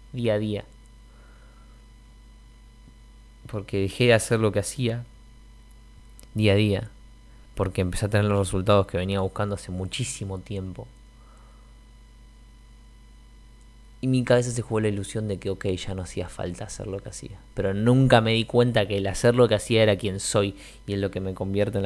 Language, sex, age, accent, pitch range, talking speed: Spanish, male, 20-39, Argentinian, 100-110 Hz, 175 wpm